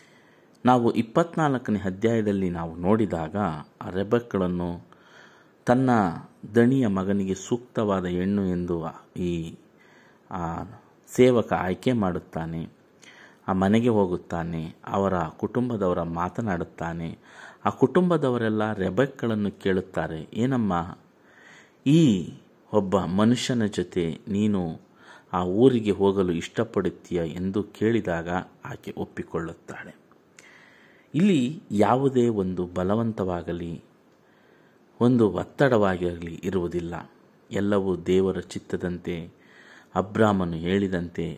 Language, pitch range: Kannada, 90-115 Hz